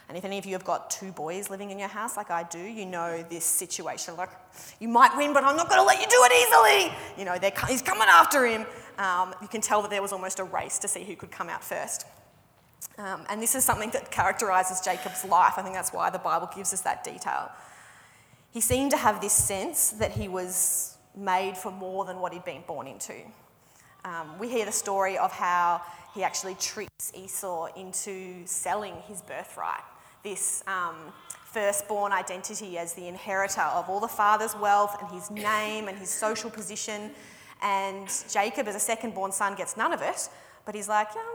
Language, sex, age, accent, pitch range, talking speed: English, female, 20-39, Australian, 185-215 Hz, 210 wpm